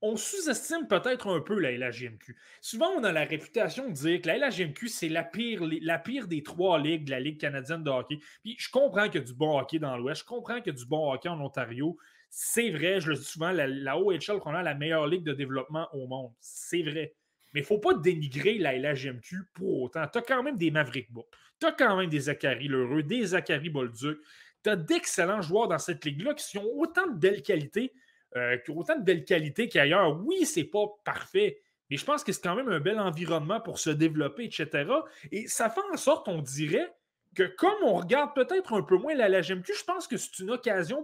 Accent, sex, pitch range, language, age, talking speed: Canadian, male, 150-240 Hz, French, 20-39, 230 wpm